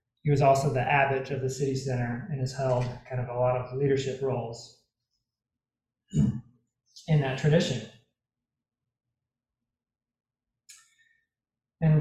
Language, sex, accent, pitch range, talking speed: English, male, American, 125-155 Hz, 115 wpm